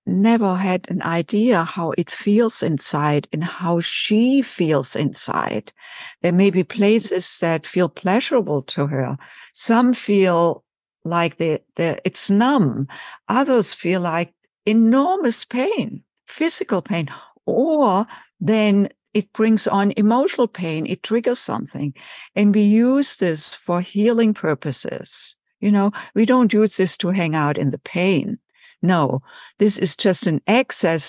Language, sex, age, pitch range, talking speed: English, female, 60-79, 145-205 Hz, 135 wpm